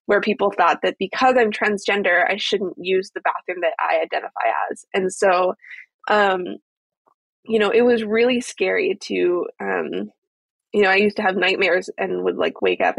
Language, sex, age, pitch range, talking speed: English, female, 20-39, 195-235 Hz, 180 wpm